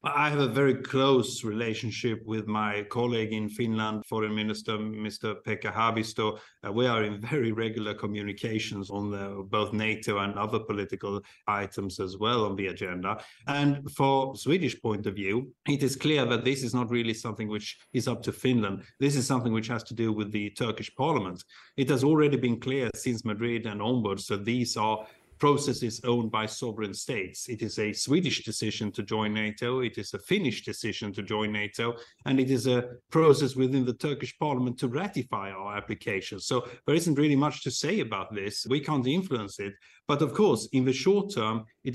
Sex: male